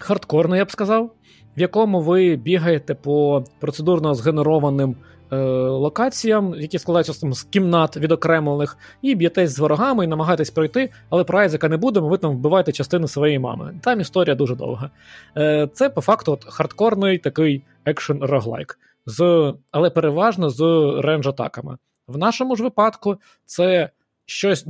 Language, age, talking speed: Ukrainian, 20-39, 145 wpm